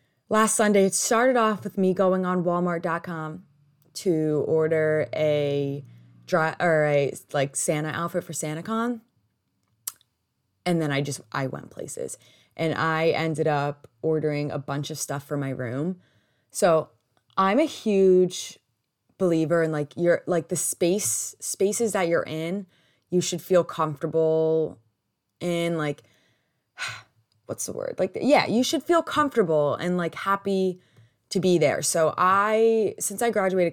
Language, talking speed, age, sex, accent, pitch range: English, 145 wpm, 20-39, female, American, 140-185 Hz